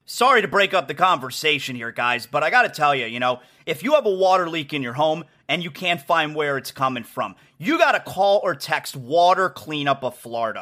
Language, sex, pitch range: English, male, 150-210 Hz